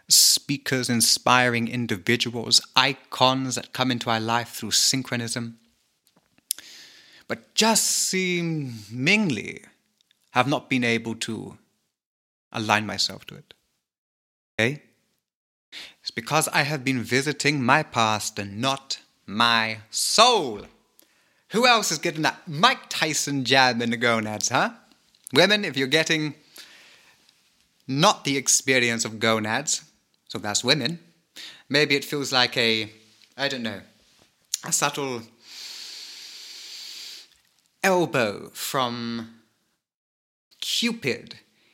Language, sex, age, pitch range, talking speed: English, male, 30-49, 115-145 Hz, 105 wpm